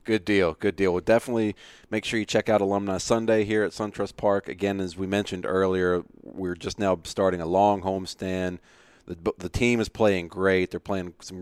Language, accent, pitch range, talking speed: English, American, 95-110 Hz, 200 wpm